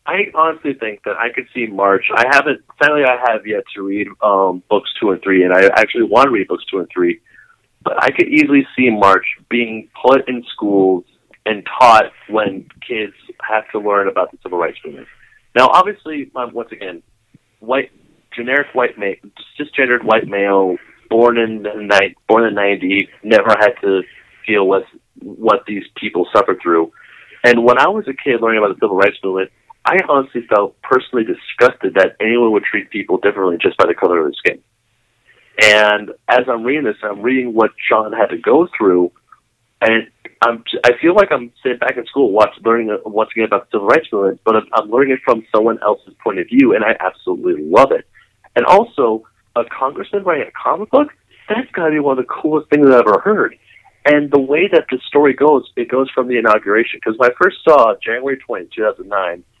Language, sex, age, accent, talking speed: English, male, 30-49, American, 195 wpm